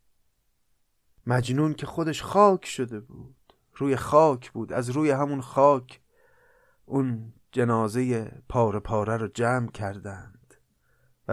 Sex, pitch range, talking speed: male, 110-150 Hz, 110 wpm